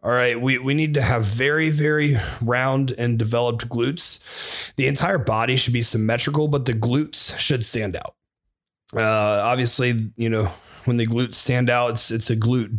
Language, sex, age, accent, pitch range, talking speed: English, male, 30-49, American, 110-140 Hz, 180 wpm